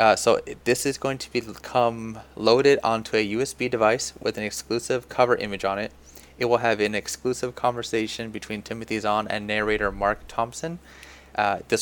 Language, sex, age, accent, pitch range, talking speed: English, male, 20-39, American, 95-115 Hz, 180 wpm